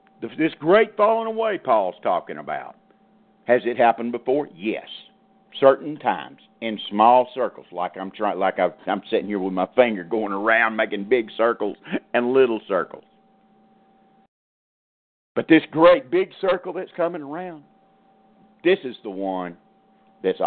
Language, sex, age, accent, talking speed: English, male, 50-69, American, 145 wpm